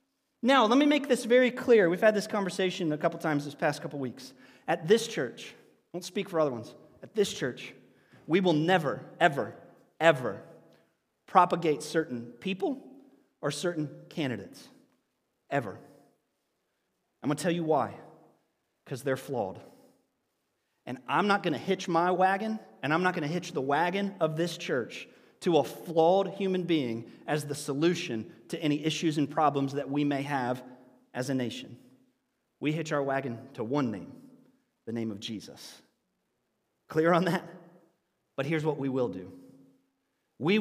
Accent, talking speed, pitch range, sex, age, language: American, 165 wpm, 145-190 Hz, male, 30-49, English